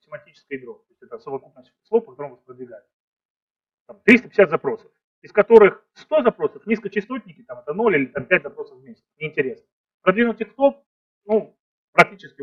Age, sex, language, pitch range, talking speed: 30-49, male, Russian, 170-275 Hz, 150 wpm